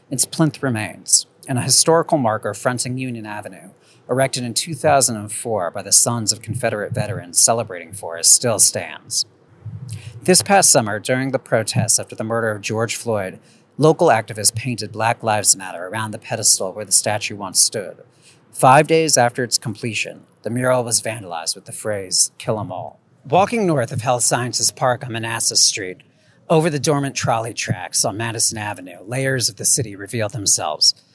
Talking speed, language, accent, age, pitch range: 170 wpm, English, American, 40-59, 115-140 Hz